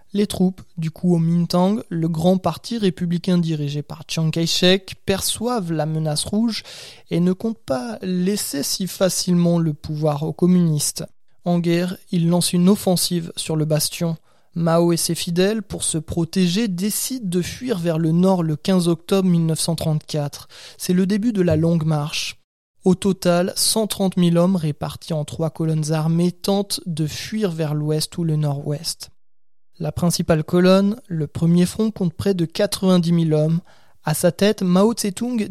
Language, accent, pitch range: French, French, 160-185 Hz